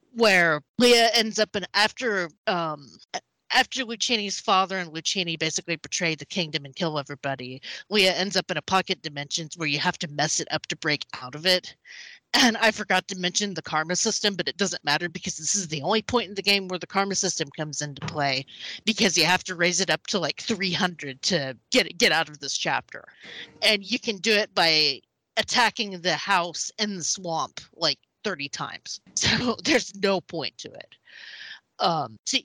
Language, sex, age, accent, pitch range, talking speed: English, female, 30-49, American, 155-205 Hz, 195 wpm